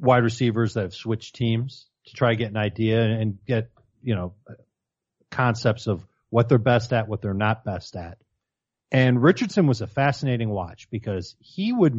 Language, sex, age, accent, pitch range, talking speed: English, male, 40-59, American, 110-150 Hz, 180 wpm